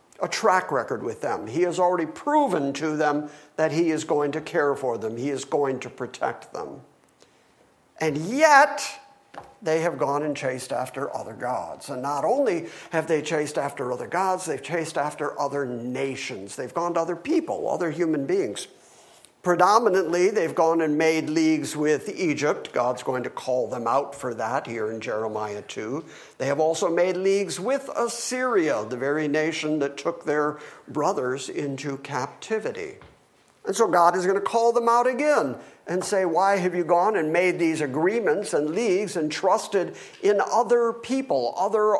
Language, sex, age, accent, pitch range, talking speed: English, male, 50-69, American, 145-195 Hz, 175 wpm